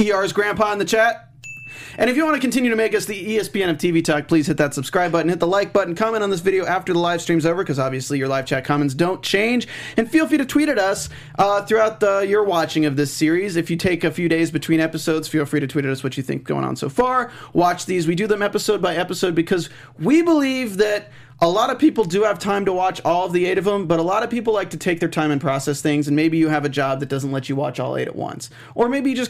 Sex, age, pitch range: male, 30-49, 145-205 Hz